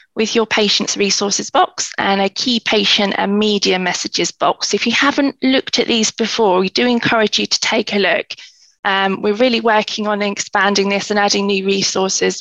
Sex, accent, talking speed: female, British, 190 wpm